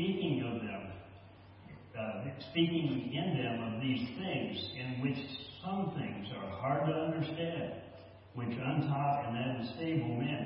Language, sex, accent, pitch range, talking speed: English, male, American, 110-135 Hz, 130 wpm